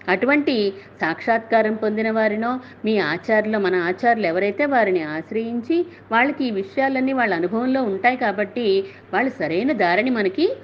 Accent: native